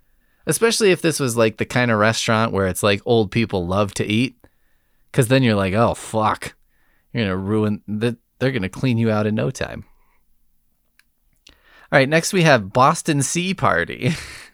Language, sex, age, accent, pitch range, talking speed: English, male, 20-39, American, 105-145 Hz, 185 wpm